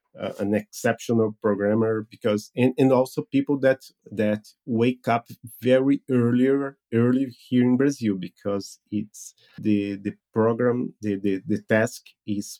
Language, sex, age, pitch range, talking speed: English, male, 30-49, 105-135 Hz, 140 wpm